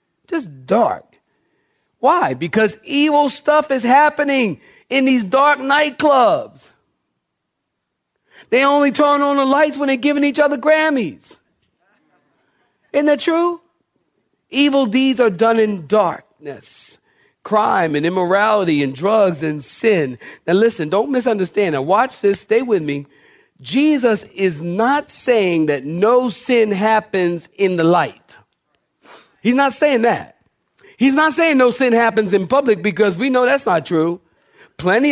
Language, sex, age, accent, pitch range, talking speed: English, male, 40-59, American, 190-265 Hz, 135 wpm